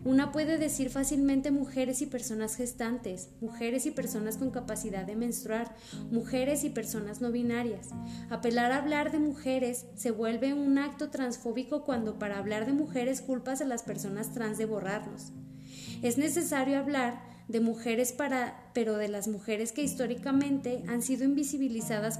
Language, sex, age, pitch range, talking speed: Spanish, female, 20-39, 215-265 Hz, 155 wpm